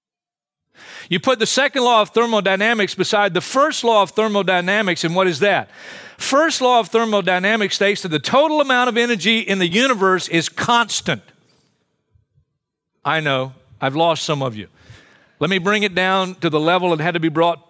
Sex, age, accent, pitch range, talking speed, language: male, 50-69, American, 160-220 Hz, 180 wpm, English